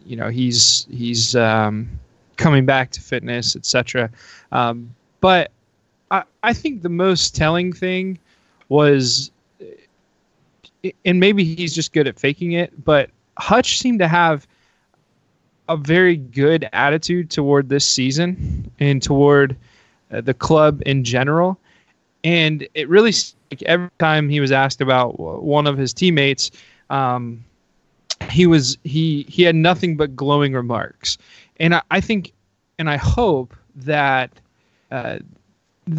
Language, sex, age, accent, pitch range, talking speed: English, male, 20-39, American, 125-165 Hz, 135 wpm